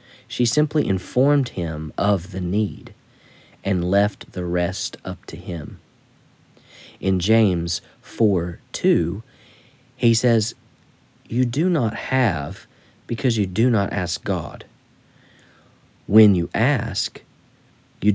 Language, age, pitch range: English, 40-59, 95-120 Hz